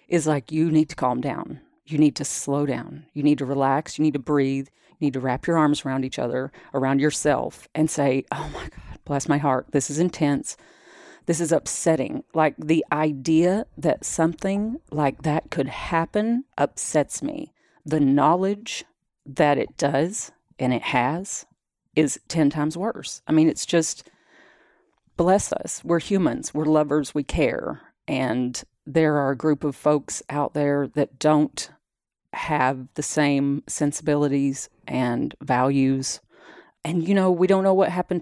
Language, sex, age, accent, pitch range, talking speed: English, female, 40-59, American, 140-170 Hz, 165 wpm